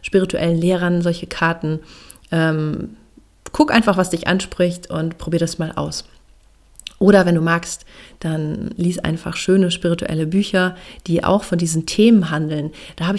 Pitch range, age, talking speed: 165-195 Hz, 30-49, 150 wpm